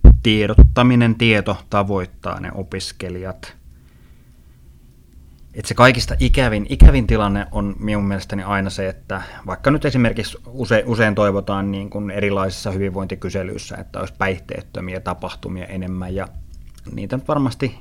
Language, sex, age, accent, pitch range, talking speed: Finnish, male, 30-49, native, 95-110 Hz, 120 wpm